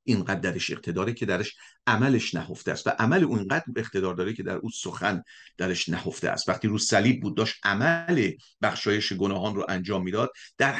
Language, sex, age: Persian, male, 50-69